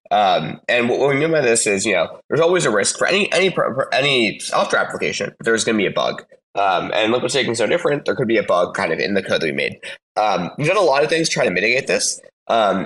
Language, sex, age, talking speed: English, male, 20-39, 285 wpm